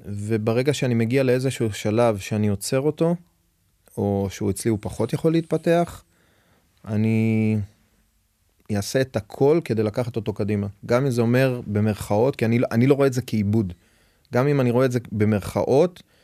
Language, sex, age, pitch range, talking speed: Hebrew, male, 30-49, 105-130 Hz, 160 wpm